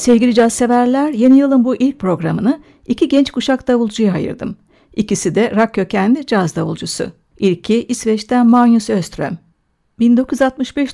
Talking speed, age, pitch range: 125 wpm, 60-79, 205-250 Hz